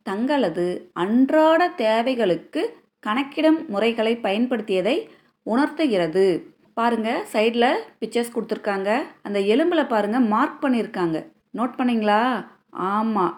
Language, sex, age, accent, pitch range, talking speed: Tamil, female, 30-49, native, 205-265 Hz, 85 wpm